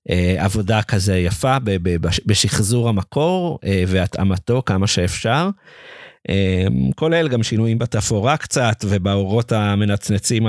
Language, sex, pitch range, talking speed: Hebrew, male, 100-130 Hz, 85 wpm